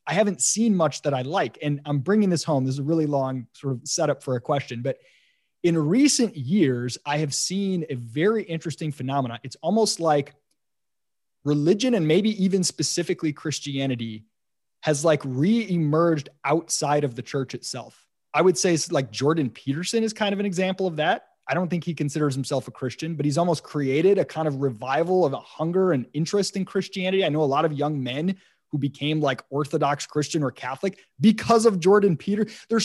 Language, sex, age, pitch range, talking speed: English, male, 20-39, 140-190 Hz, 195 wpm